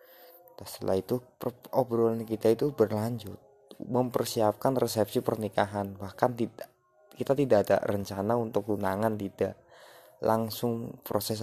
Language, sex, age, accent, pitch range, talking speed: Indonesian, male, 20-39, native, 100-120 Hz, 110 wpm